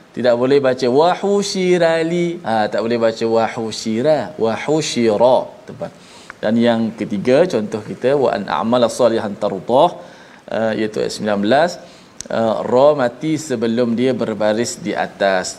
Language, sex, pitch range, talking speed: Malayalam, male, 115-165 Hz, 125 wpm